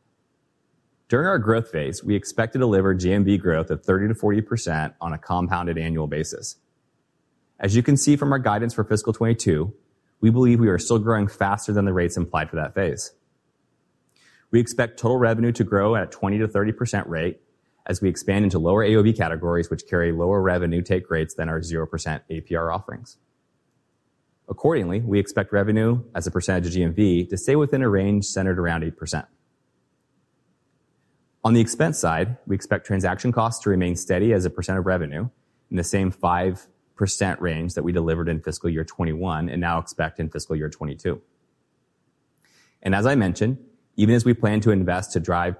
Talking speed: 180 wpm